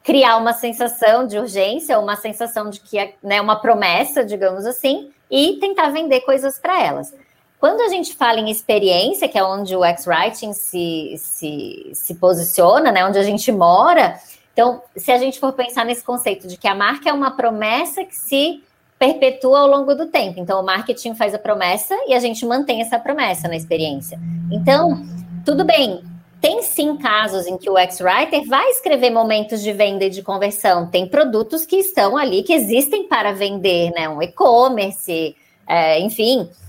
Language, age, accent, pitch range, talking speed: Portuguese, 20-39, Brazilian, 190-270 Hz, 175 wpm